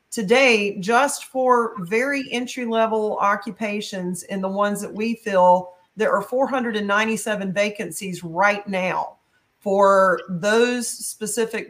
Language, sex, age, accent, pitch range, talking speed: English, female, 40-59, American, 200-240 Hz, 110 wpm